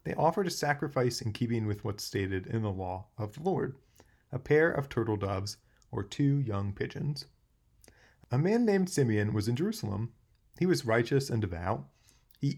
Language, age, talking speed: English, 30-49, 175 wpm